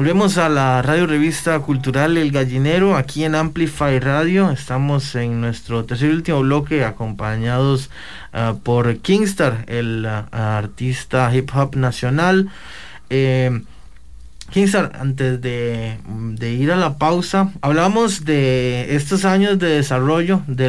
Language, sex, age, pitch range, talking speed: English, male, 20-39, 120-155 Hz, 130 wpm